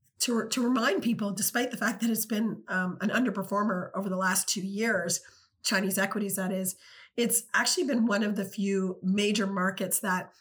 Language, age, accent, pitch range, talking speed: English, 30-49, American, 190-220 Hz, 185 wpm